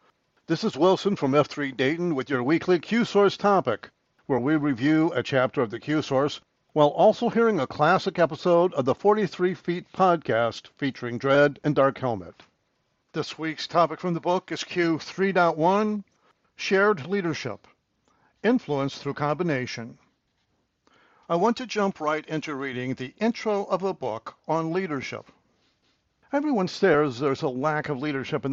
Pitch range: 135-190 Hz